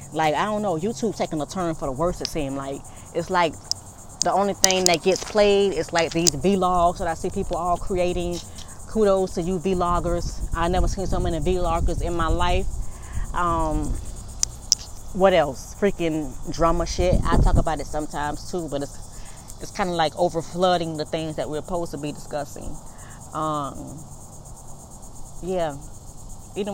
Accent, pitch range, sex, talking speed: American, 145-190 Hz, female, 170 wpm